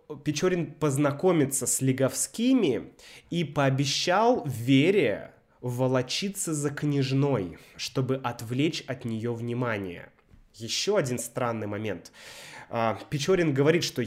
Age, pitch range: 20-39, 120-155 Hz